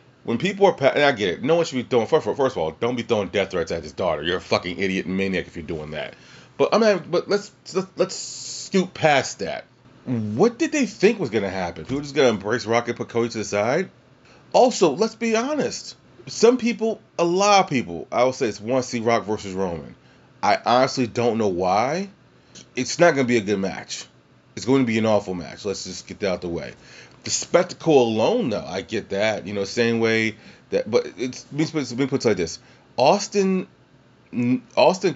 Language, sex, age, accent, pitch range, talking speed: English, male, 30-49, American, 105-155 Hz, 225 wpm